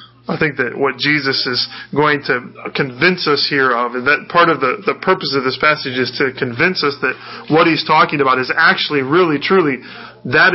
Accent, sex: American, male